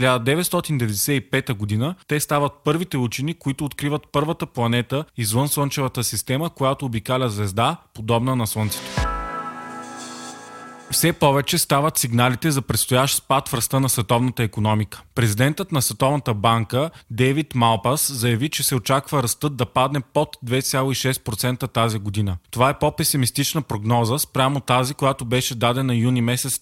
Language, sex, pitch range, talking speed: Bulgarian, male, 115-140 Hz, 135 wpm